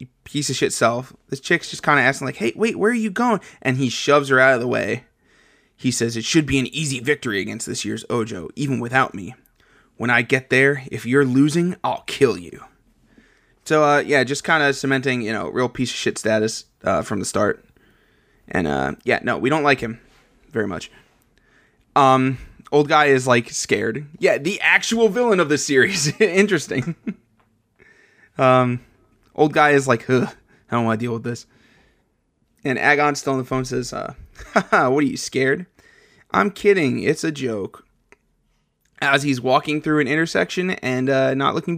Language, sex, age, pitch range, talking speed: English, male, 20-39, 120-160 Hz, 190 wpm